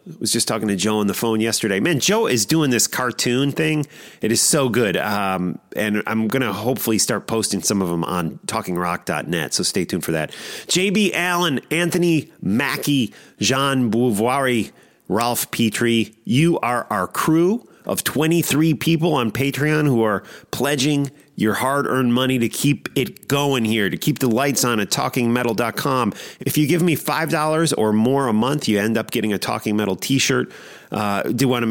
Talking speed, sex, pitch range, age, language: 180 wpm, male, 105-145 Hz, 40-59, English